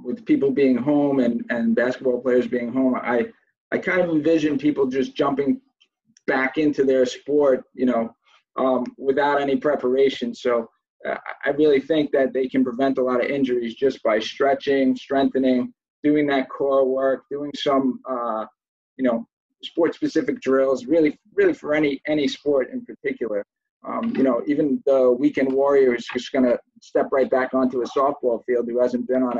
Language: English